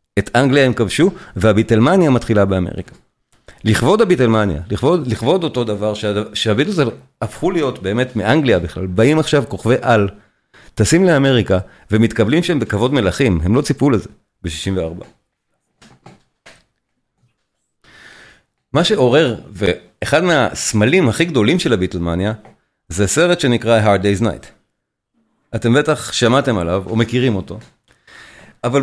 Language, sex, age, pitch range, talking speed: Hebrew, male, 40-59, 100-140 Hz, 115 wpm